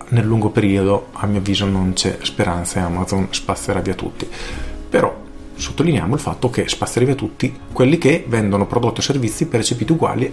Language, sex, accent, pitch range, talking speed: Italian, male, native, 100-130 Hz, 175 wpm